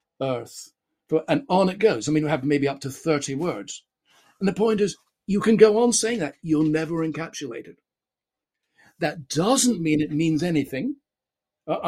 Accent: British